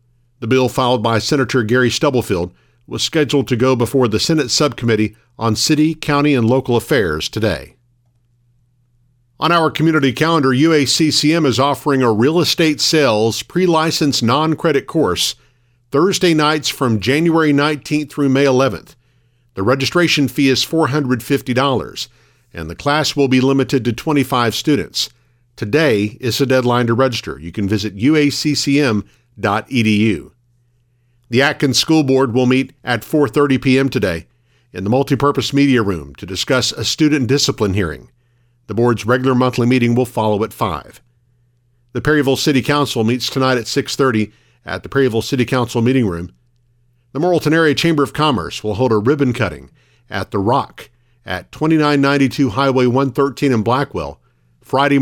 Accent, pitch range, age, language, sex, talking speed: American, 120-145 Hz, 50-69, English, male, 150 wpm